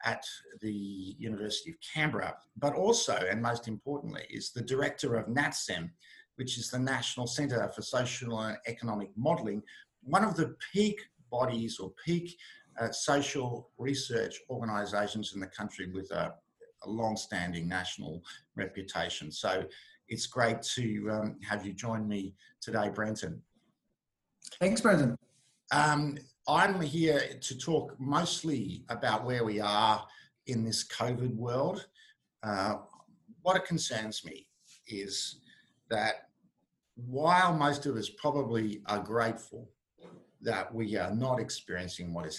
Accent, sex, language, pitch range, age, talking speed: Australian, male, English, 105-145 Hz, 50-69, 130 wpm